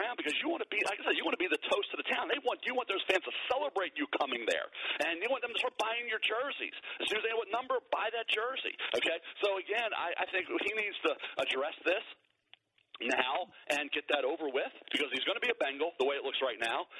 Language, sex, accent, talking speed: English, male, American, 270 wpm